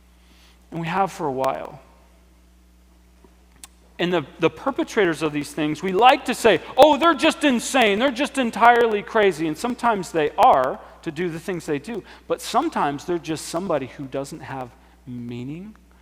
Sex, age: male, 40-59